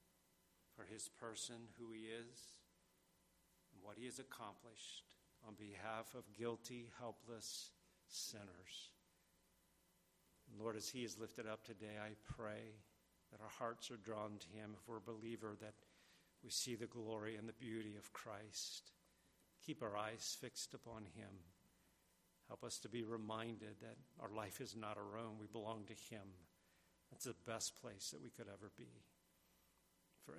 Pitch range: 105-115 Hz